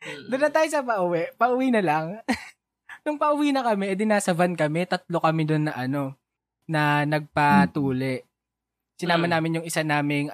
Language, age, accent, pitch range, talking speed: Filipino, 20-39, native, 145-210 Hz, 170 wpm